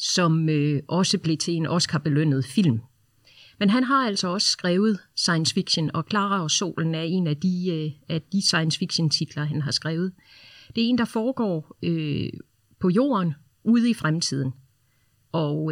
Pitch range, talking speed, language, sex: 155-205 Hz, 145 wpm, Danish, female